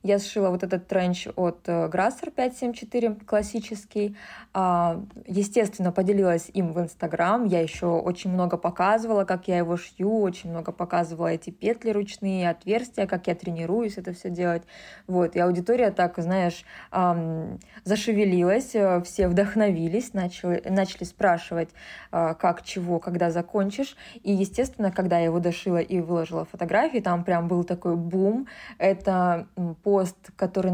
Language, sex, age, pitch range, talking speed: Russian, female, 20-39, 180-215 Hz, 130 wpm